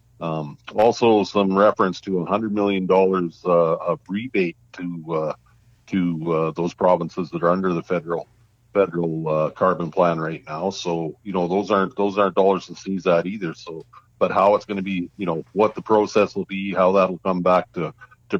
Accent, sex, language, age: American, male, English, 50-69